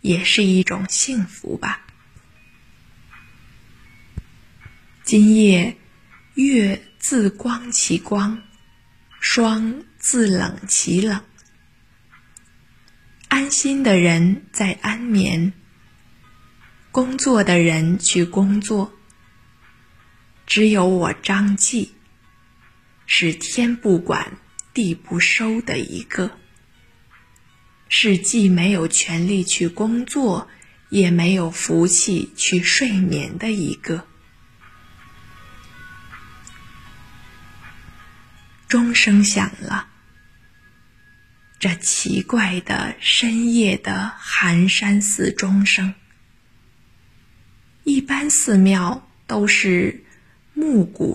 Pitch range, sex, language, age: 180-230 Hz, female, Chinese, 20-39